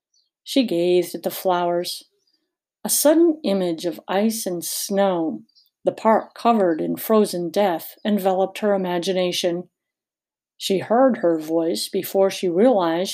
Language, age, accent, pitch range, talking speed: English, 50-69, American, 185-250 Hz, 130 wpm